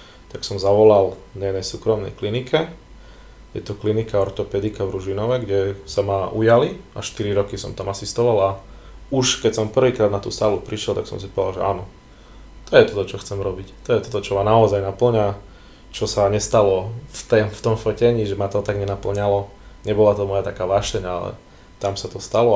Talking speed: 195 wpm